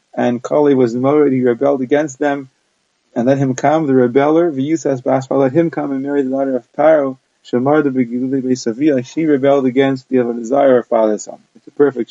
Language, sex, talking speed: English, male, 205 wpm